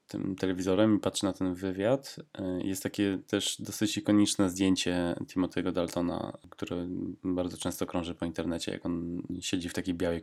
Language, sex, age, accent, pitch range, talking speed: Polish, male, 20-39, native, 90-105 Hz, 160 wpm